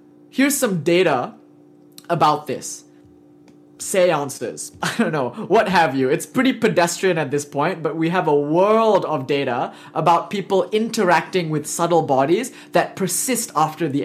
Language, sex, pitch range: English, male, 145-215 Hz